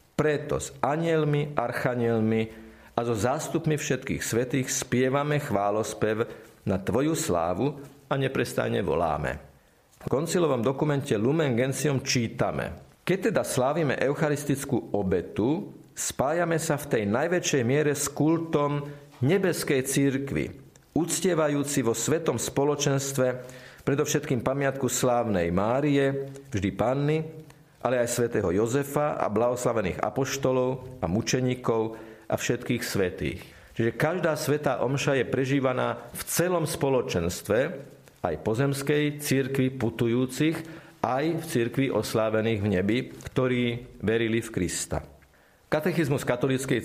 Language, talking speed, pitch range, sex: Slovak, 110 wpm, 120-150 Hz, male